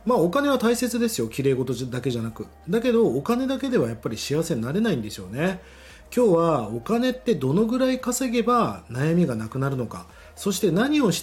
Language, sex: Japanese, male